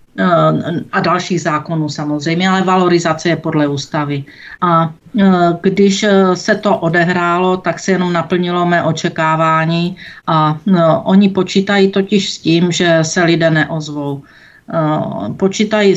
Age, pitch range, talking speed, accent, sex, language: 50-69, 160-180 Hz, 115 wpm, native, female, Czech